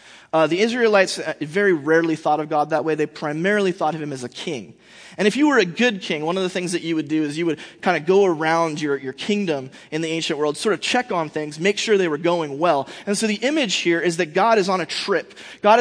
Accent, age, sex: American, 30-49, male